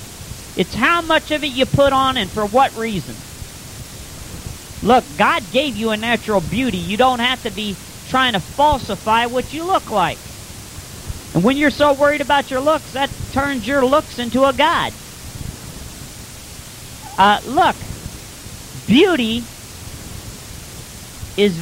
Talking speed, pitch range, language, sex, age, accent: 140 wpm, 200-280 Hz, English, male, 40-59, American